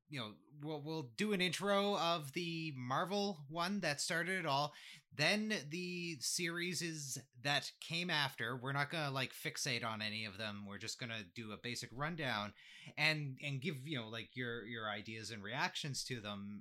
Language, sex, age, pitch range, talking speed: English, male, 30-49, 130-185 Hz, 190 wpm